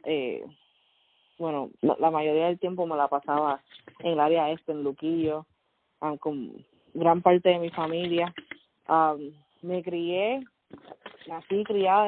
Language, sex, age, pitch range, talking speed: Spanish, female, 20-39, 155-190 Hz, 140 wpm